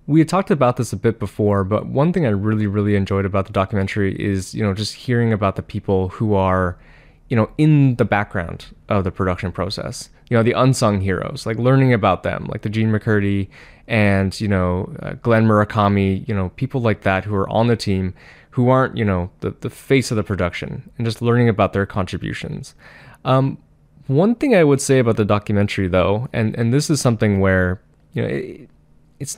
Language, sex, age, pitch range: English, male, 20-39, 95-125 Hz